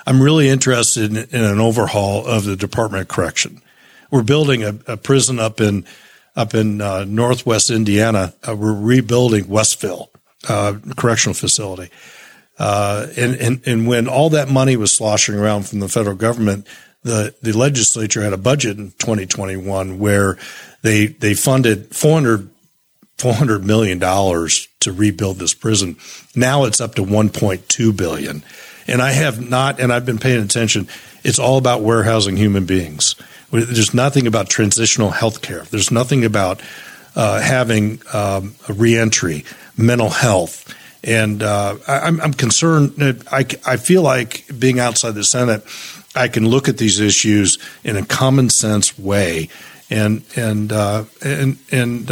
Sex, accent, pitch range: male, American, 105-125 Hz